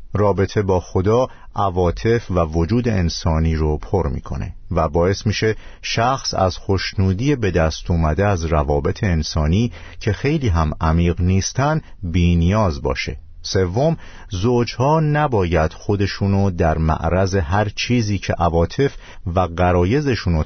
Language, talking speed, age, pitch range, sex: Persian, 125 wpm, 50-69, 85-115 Hz, male